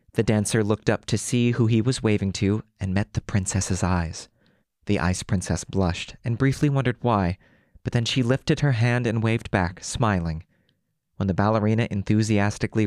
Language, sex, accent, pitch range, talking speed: English, male, American, 95-115 Hz, 175 wpm